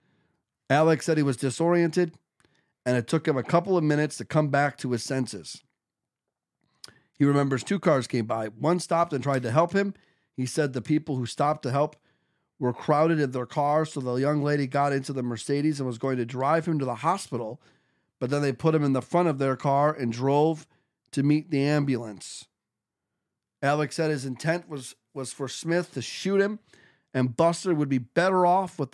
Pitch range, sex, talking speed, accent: 130-165 Hz, male, 200 wpm, American